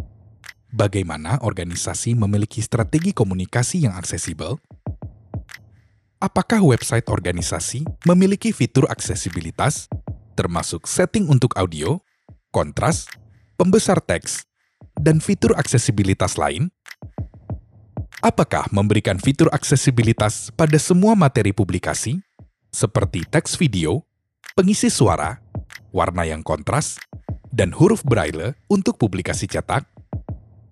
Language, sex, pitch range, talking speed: Indonesian, male, 100-150 Hz, 90 wpm